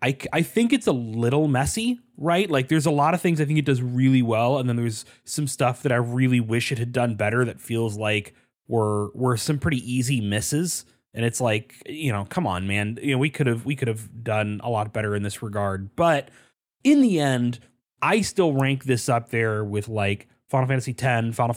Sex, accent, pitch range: male, American, 110-140 Hz